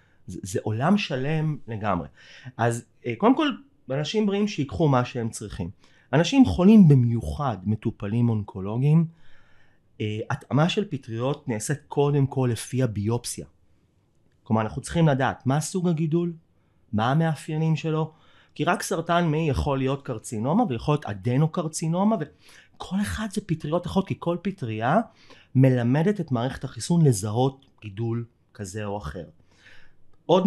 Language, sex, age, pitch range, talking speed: Hebrew, male, 30-49, 110-160 Hz, 135 wpm